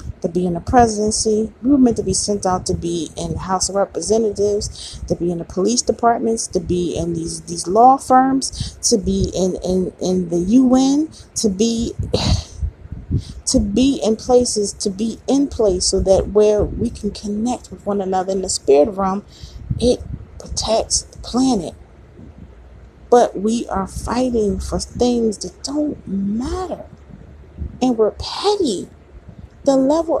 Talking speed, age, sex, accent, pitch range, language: 160 wpm, 30-49, female, American, 190-260 Hz, English